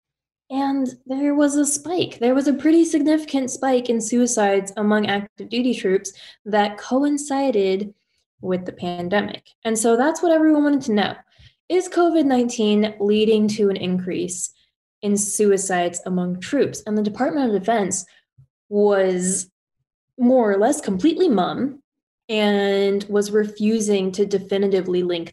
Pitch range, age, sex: 195-255 Hz, 10-29, female